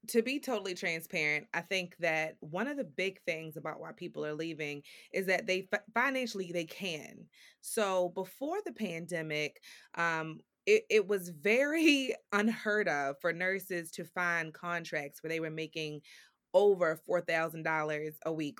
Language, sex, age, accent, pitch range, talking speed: English, female, 20-39, American, 160-215 Hz, 150 wpm